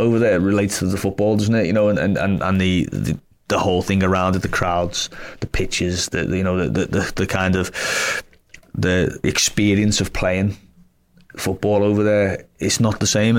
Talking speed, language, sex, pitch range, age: 185 wpm, English, male, 95-105 Hz, 20-39